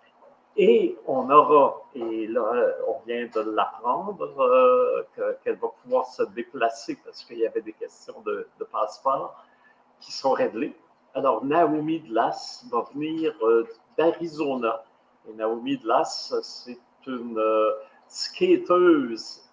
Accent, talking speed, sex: French, 125 wpm, male